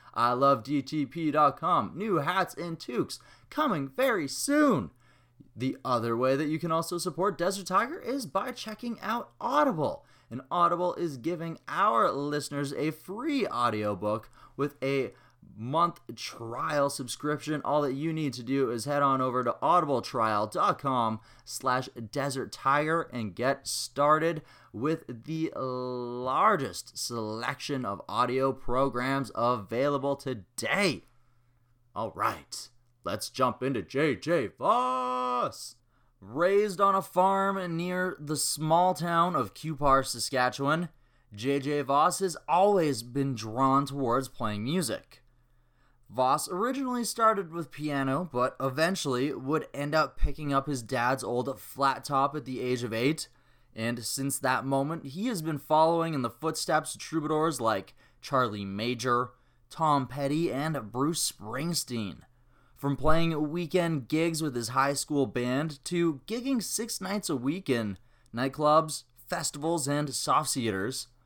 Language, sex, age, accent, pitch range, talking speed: English, male, 20-39, American, 125-160 Hz, 130 wpm